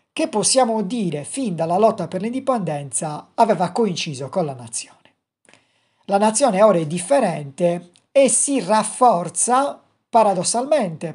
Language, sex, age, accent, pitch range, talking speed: Italian, male, 50-69, native, 160-220 Hz, 120 wpm